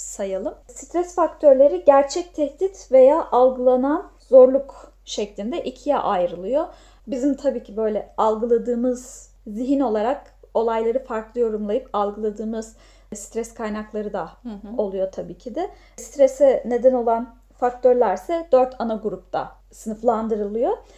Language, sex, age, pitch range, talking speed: Turkish, female, 10-29, 215-280 Hz, 105 wpm